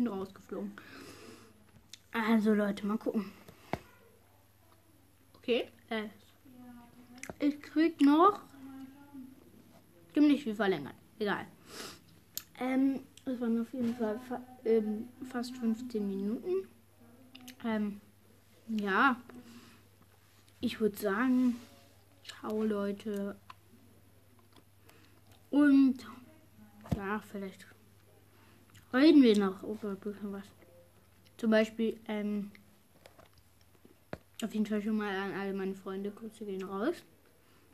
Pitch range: 185-245 Hz